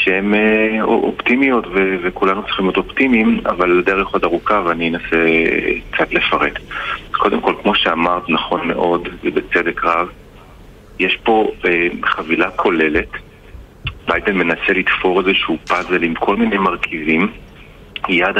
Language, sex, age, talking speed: Hebrew, male, 40-59, 115 wpm